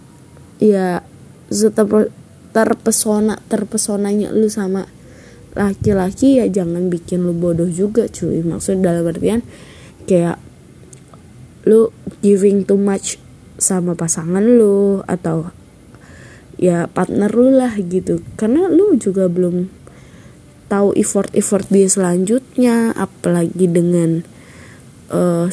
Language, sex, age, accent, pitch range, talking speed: Indonesian, female, 20-39, native, 180-215 Hz, 95 wpm